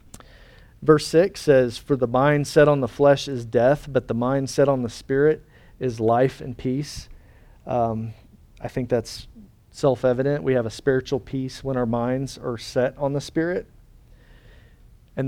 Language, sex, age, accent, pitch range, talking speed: English, male, 40-59, American, 120-145 Hz, 165 wpm